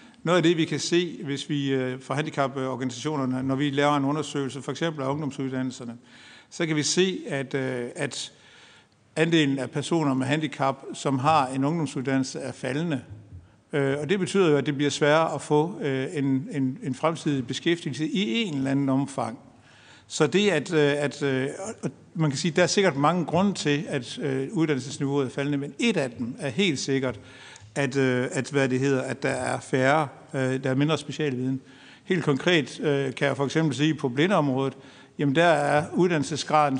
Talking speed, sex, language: 180 wpm, male, Danish